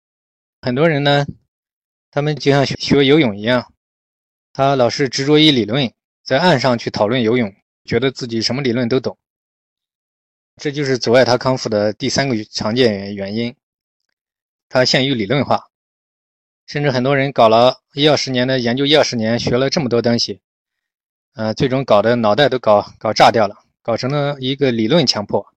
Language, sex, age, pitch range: Chinese, male, 20-39, 110-140 Hz